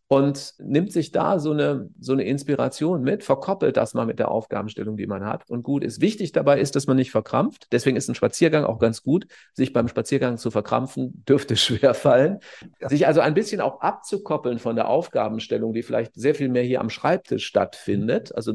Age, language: 40-59, German